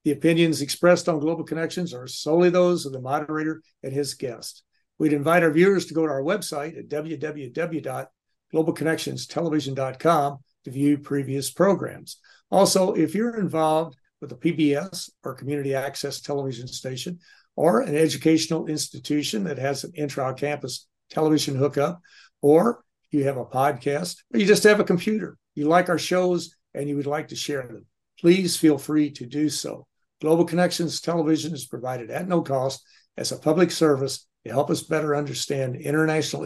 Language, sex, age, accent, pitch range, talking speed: English, male, 60-79, American, 135-165 Hz, 160 wpm